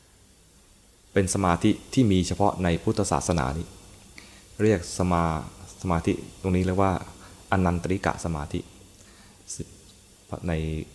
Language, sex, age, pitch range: Thai, male, 20-39, 85-100 Hz